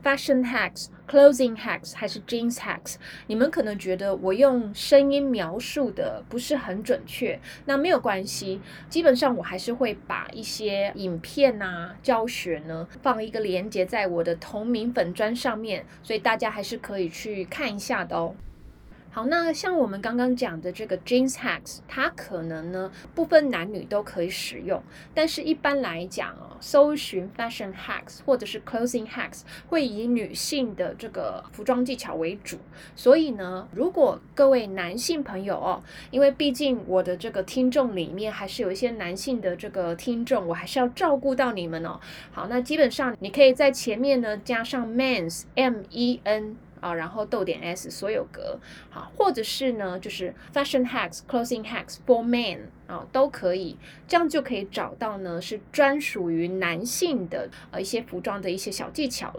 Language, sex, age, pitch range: Chinese, female, 20-39, 190-265 Hz